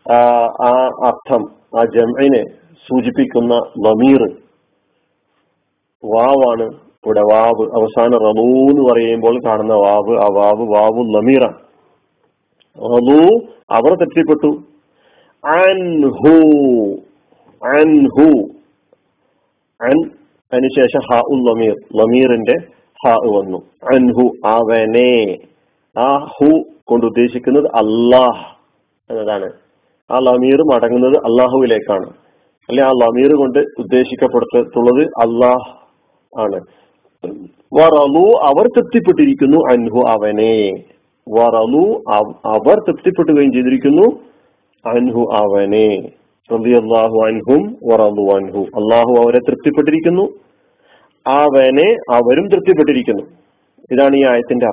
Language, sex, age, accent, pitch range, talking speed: Malayalam, male, 50-69, native, 115-150 Hz, 70 wpm